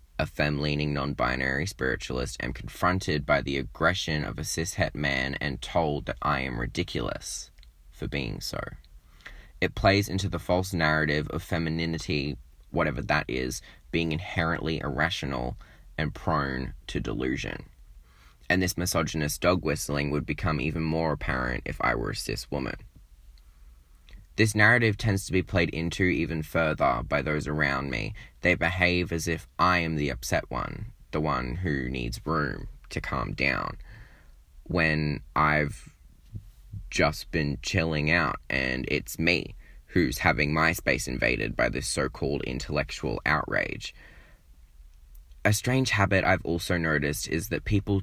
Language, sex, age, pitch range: English, male, 10-29, 70-90 Hz